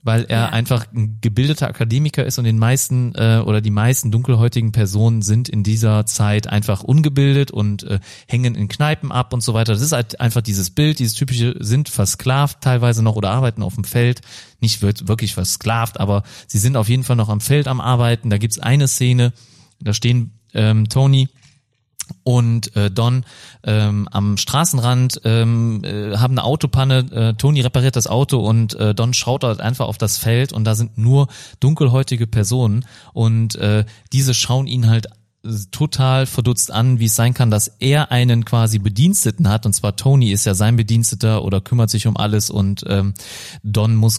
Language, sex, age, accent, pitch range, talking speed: German, male, 30-49, German, 105-125 Hz, 185 wpm